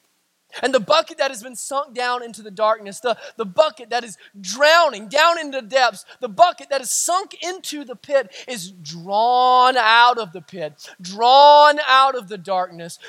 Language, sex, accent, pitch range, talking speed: English, male, American, 245-325 Hz, 185 wpm